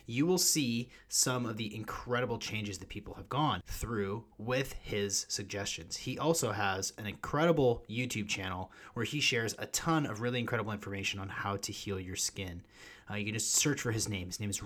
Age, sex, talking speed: 30-49, male, 200 wpm